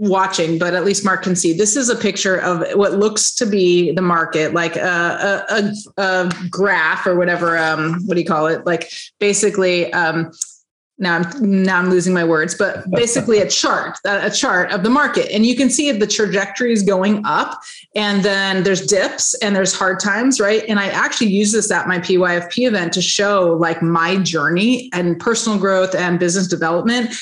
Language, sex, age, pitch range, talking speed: English, female, 30-49, 185-220 Hz, 190 wpm